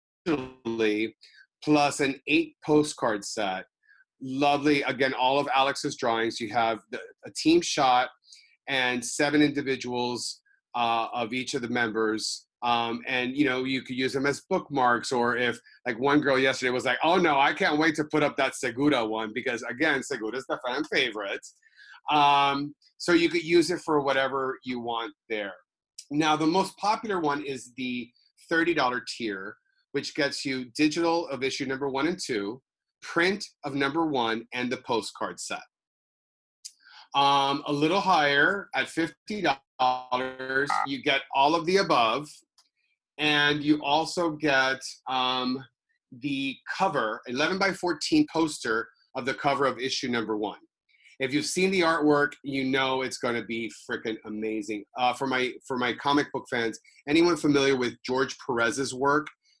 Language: English